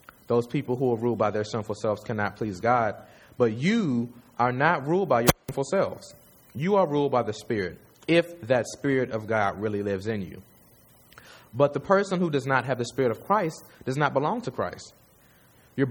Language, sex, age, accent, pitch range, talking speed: English, male, 30-49, American, 110-140 Hz, 200 wpm